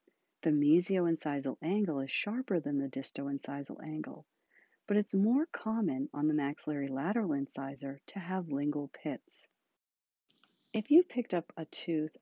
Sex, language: female, English